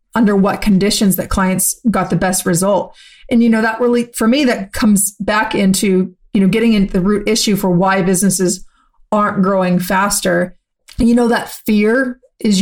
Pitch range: 185-220 Hz